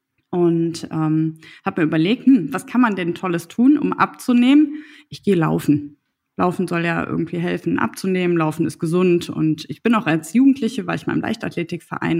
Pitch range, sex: 165-210 Hz, female